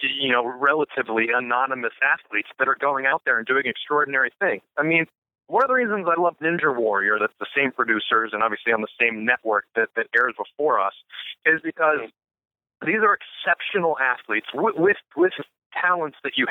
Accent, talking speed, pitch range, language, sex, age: American, 185 wpm, 130-170 Hz, English, male, 40-59